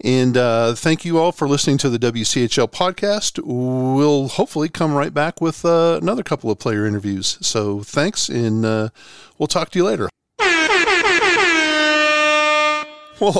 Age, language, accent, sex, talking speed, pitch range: 50-69, English, American, male, 150 wpm, 120-165 Hz